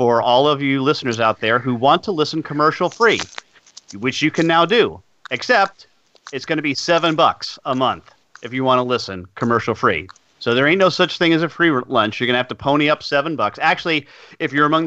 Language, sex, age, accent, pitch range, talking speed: English, male, 40-59, American, 125-165 Hz, 230 wpm